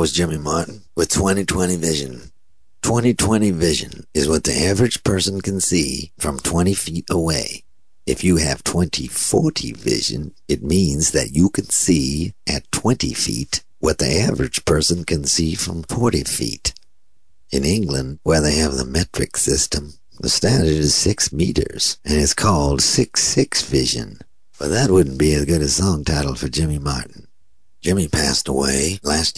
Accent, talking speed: American, 155 wpm